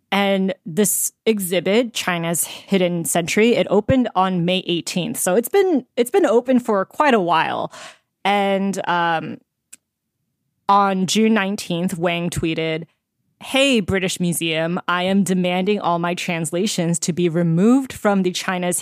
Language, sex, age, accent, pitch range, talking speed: English, female, 20-39, American, 165-200 Hz, 135 wpm